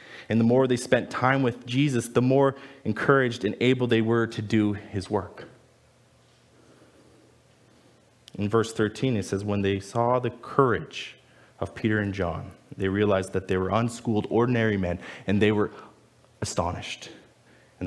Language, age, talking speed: English, 30-49, 155 wpm